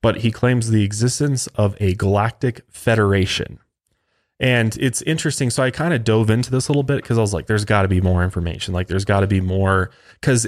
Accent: American